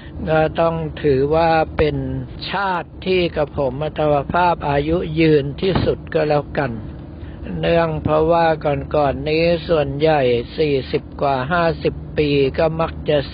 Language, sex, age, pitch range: Thai, male, 60-79, 140-160 Hz